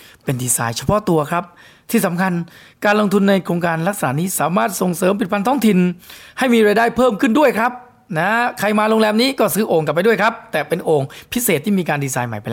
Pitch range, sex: 140-205 Hz, male